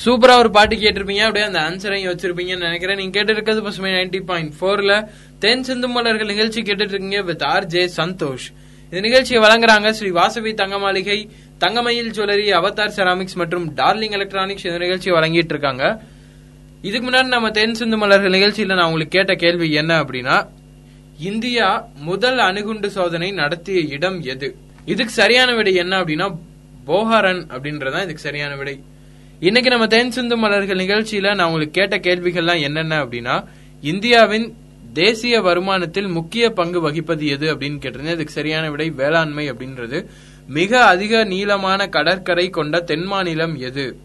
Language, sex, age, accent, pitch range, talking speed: Tamil, male, 20-39, native, 160-210 Hz, 70 wpm